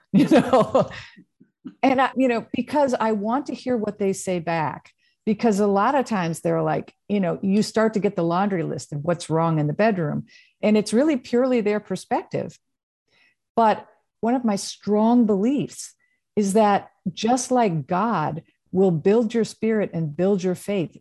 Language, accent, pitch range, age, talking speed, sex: English, American, 165-220 Hz, 50-69, 175 wpm, female